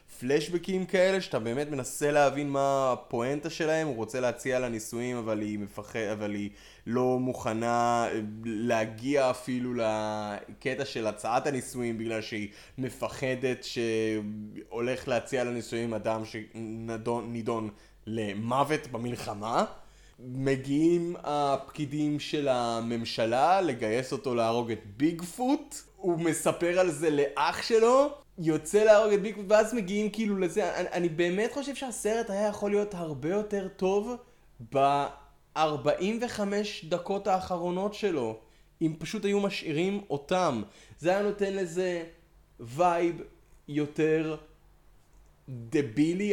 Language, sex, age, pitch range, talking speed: Hebrew, male, 20-39, 120-185 Hz, 115 wpm